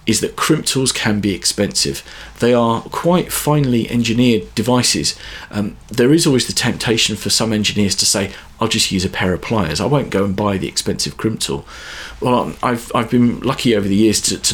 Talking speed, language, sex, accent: 205 wpm, English, male, British